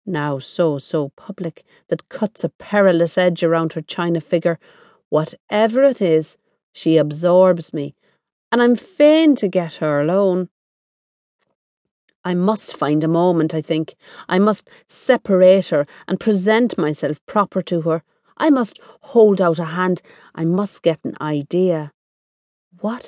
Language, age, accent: English, 40-59, Irish